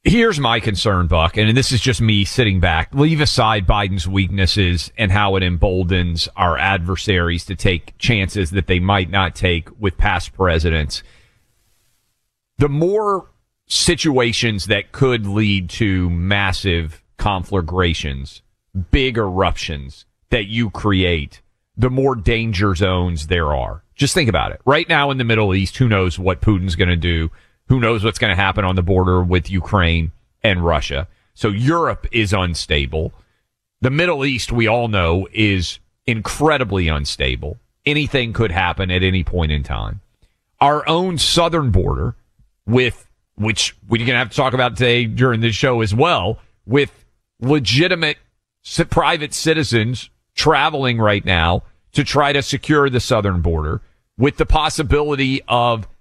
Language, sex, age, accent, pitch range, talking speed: English, male, 40-59, American, 90-125 Hz, 150 wpm